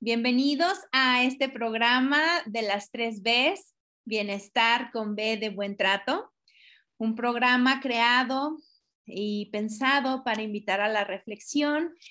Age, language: 30-49, Spanish